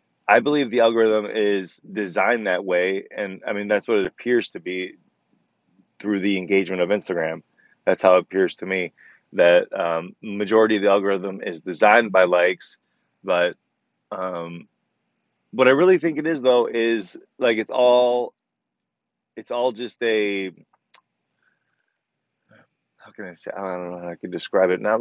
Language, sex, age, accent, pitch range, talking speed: English, male, 20-39, American, 95-125 Hz, 165 wpm